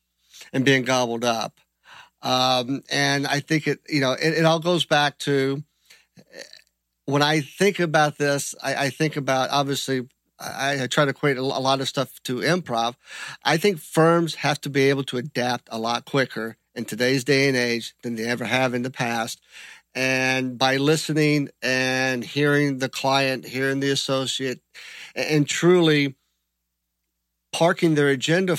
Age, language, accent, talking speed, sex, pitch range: 50-69, English, American, 165 wpm, male, 130-150 Hz